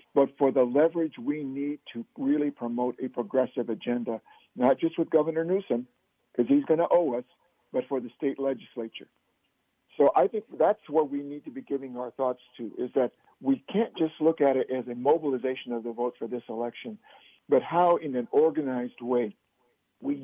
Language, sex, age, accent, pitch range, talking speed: English, male, 60-79, American, 125-150 Hz, 190 wpm